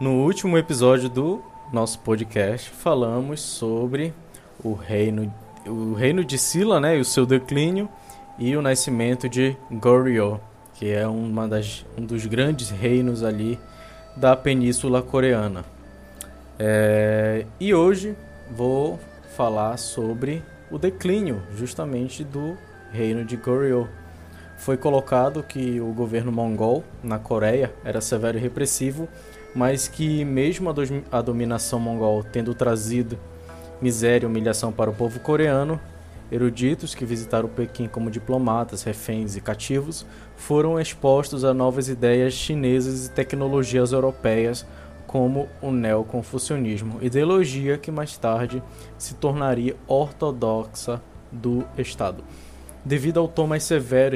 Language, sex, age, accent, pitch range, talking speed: Portuguese, male, 20-39, Brazilian, 110-135 Hz, 125 wpm